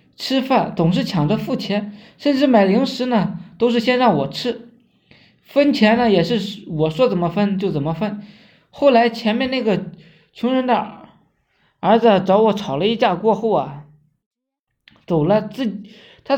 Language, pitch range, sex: Chinese, 180-245 Hz, male